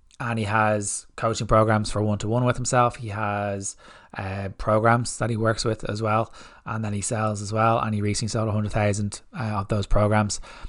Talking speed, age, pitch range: 190 wpm, 20-39, 105-115 Hz